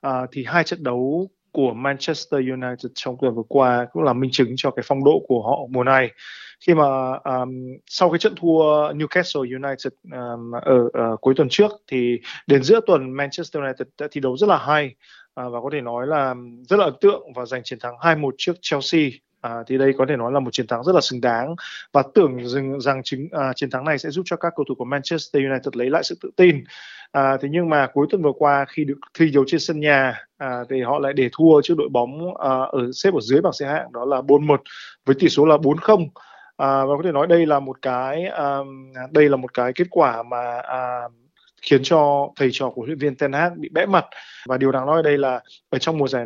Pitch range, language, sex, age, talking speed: 125-150 Hz, Vietnamese, male, 20-39, 235 wpm